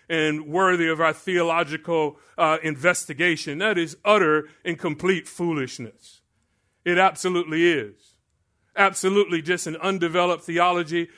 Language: English